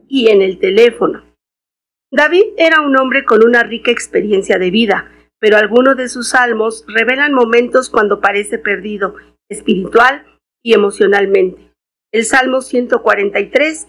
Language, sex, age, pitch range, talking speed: Spanish, female, 50-69, 205-255 Hz, 125 wpm